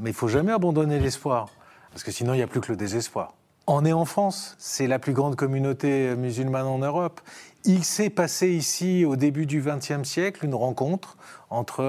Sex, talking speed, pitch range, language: male, 205 wpm, 125-165 Hz, French